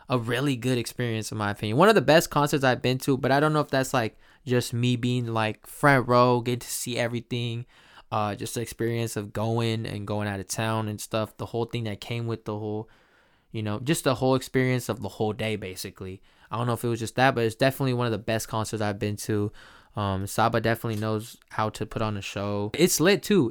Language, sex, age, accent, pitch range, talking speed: English, male, 10-29, American, 110-135 Hz, 245 wpm